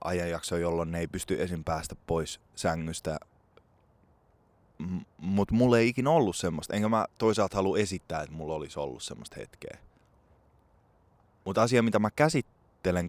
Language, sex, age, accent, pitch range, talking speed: Finnish, male, 20-39, native, 85-105 Hz, 145 wpm